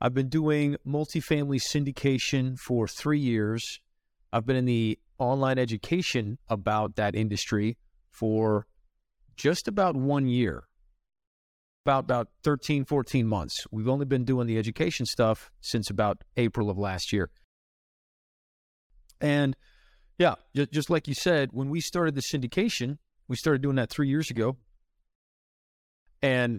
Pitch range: 110-140 Hz